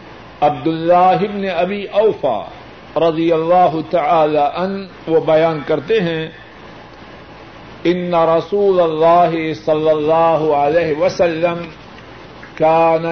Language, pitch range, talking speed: Urdu, 160-185 Hz, 85 wpm